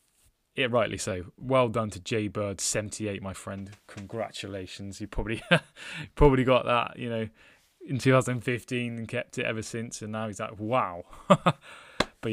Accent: British